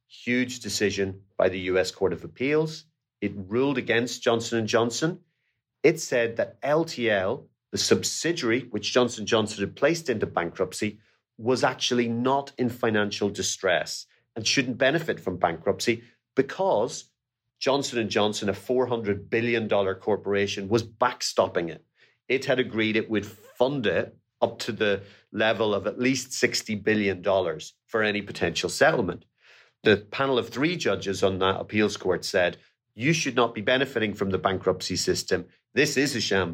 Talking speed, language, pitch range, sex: 150 wpm, English, 105-125 Hz, male